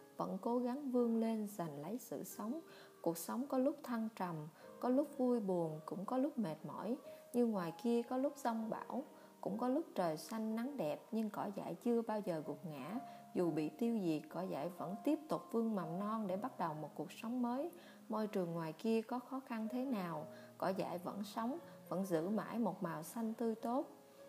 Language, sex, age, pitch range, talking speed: Vietnamese, female, 20-39, 180-245 Hz, 210 wpm